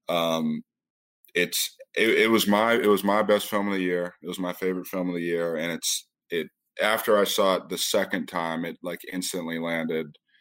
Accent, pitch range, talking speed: American, 80-90 Hz, 210 wpm